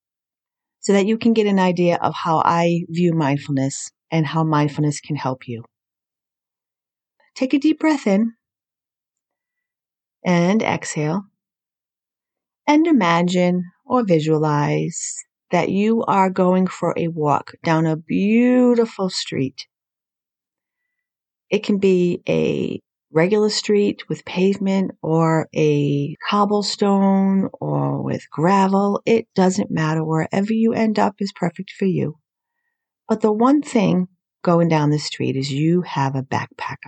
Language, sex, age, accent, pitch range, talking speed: English, female, 40-59, American, 155-210 Hz, 125 wpm